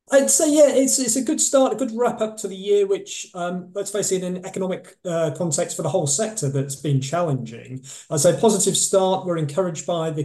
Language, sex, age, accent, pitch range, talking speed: English, male, 30-49, British, 135-175 Hz, 235 wpm